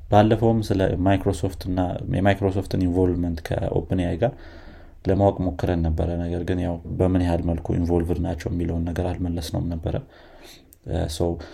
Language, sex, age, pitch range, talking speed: Amharic, male, 30-49, 85-95 Hz, 105 wpm